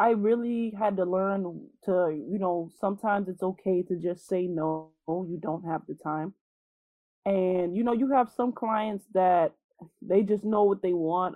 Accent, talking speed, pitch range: American, 180 wpm, 165-195 Hz